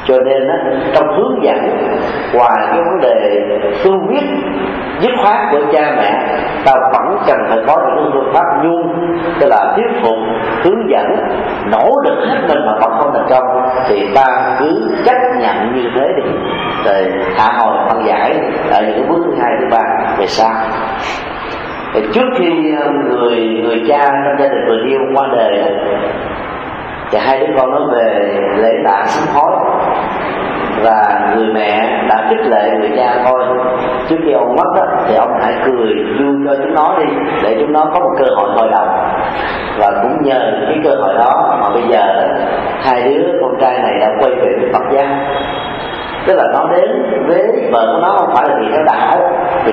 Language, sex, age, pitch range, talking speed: Vietnamese, male, 40-59, 130-190 Hz, 185 wpm